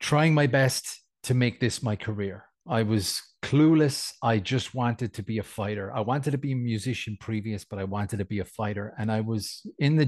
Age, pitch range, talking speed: 30-49, 105-125 Hz, 220 wpm